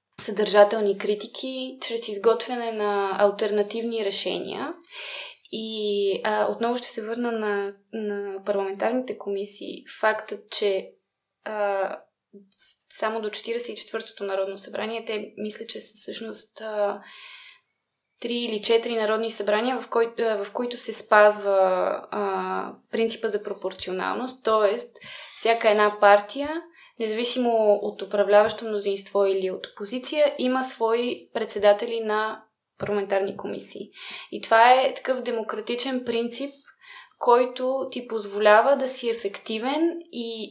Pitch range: 205-250 Hz